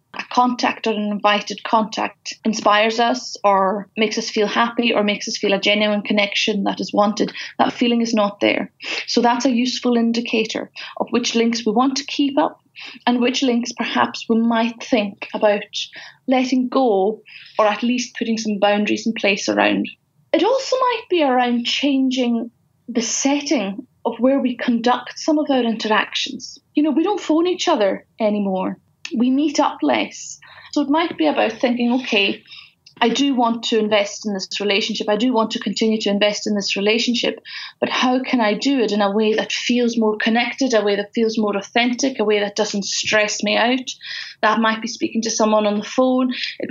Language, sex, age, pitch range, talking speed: English, female, 30-49, 210-255 Hz, 190 wpm